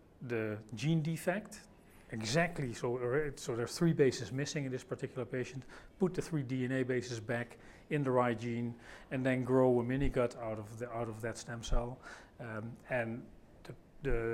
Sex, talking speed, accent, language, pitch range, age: male, 180 wpm, Dutch, English, 115-135 Hz, 40-59